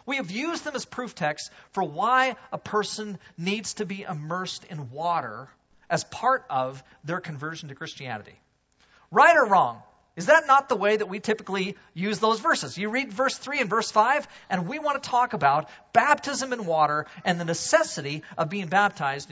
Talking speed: 185 wpm